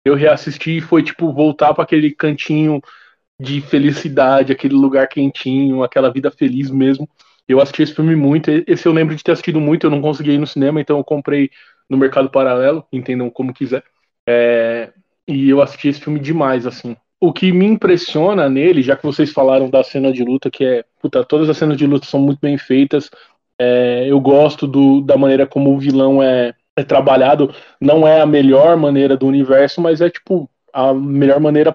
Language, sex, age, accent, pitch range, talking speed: Portuguese, male, 20-39, Brazilian, 135-155 Hz, 195 wpm